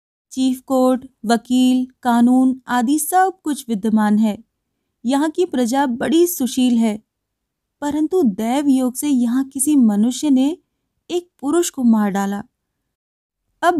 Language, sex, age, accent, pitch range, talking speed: Hindi, female, 20-39, native, 225-280 Hz, 125 wpm